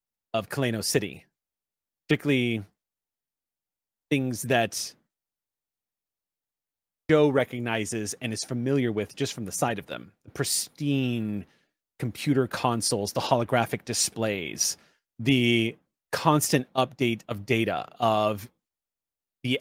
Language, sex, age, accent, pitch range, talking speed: English, male, 30-49, American, 105-135 Hz, 95 wpm